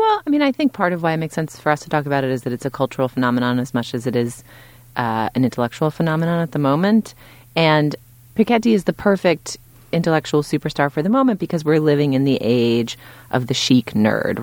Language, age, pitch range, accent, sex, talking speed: English, 30-49, 115-145 Hz, American, female, 230 wpm